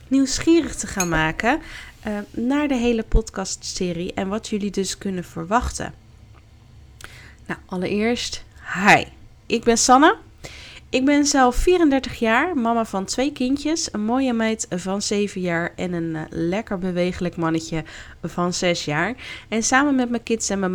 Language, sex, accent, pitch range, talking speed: Dutch, female, Dutch, 170-235 Hz, 155 wpm